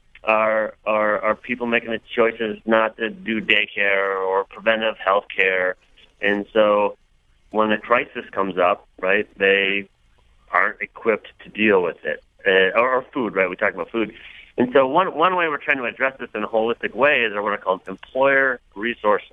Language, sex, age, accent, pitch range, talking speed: English, male, 30-49, American, 95-110 Hz, 180 wpm